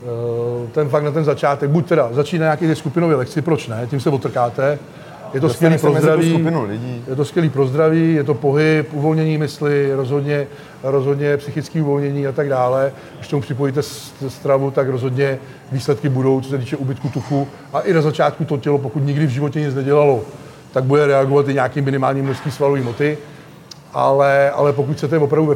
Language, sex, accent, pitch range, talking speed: Czech, male, native, 135-150 Hz, 175 wpm